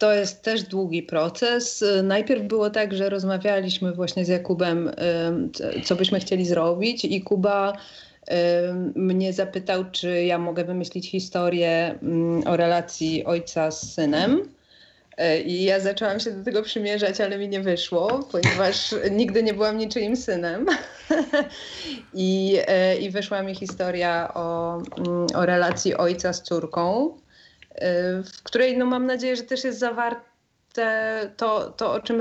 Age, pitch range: 30-49, 175-215 Hz